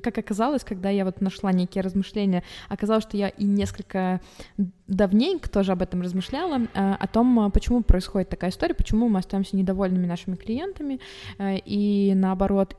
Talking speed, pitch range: 150 wpm, 195-230 Hz